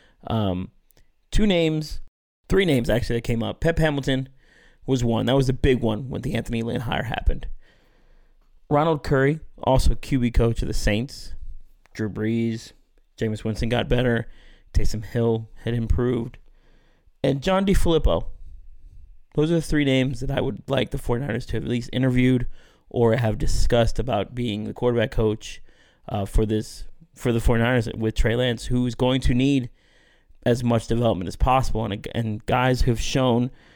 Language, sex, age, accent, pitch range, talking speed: English, male, 30-49, American, 110-130 Hz, 165 wpm